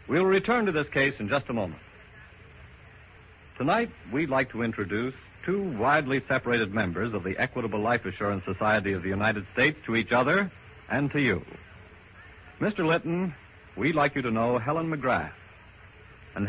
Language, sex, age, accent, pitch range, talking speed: English, male, 70-89, American, 105-160 Hz, 160 wpm